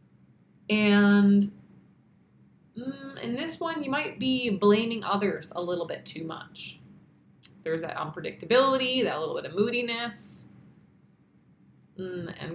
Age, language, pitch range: 20-39, English, 175-210 Hz